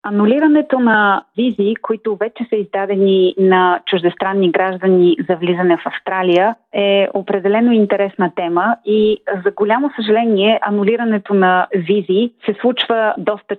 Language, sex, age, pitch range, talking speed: Bulgarian, female, 30-49, 185-225 Hz, 125 wpm